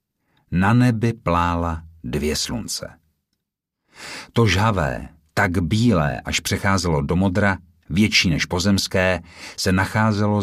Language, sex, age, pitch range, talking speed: Czech, male, 50-69, 80-105 Hz, 105 wpm